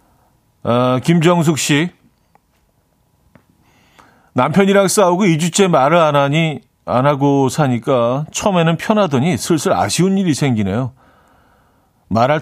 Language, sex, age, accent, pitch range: Korean, male, 40-59, native, 120-165 Hz